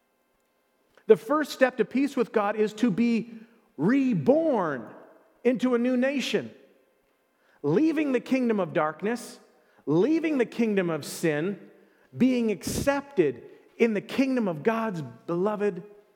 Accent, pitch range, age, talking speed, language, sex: American, 200-260 Hz, 40-59, 125 wpm, English, male